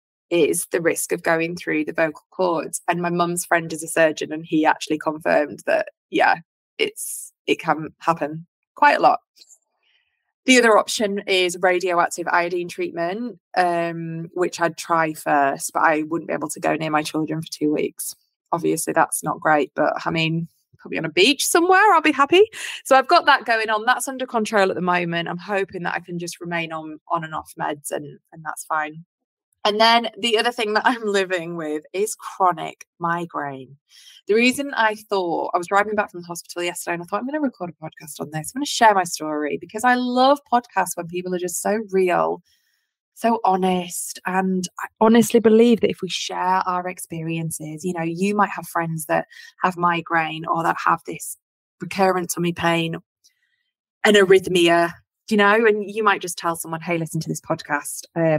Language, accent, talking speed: English, British, 195 wpm